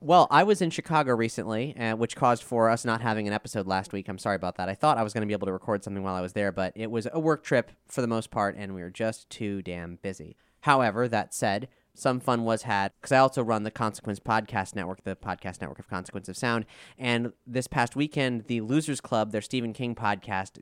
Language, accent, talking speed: English, American, 250 wpm